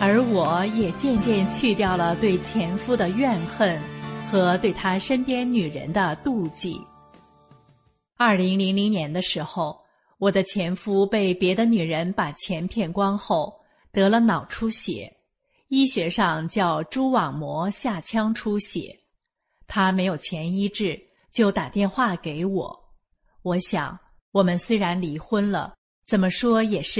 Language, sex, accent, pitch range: English, female, Chinese, 175-220 Hz